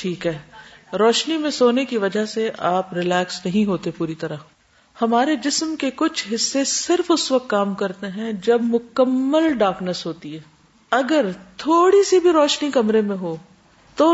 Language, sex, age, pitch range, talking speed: Urdu, female, 50-69, 185-255 Hz, 165 wpm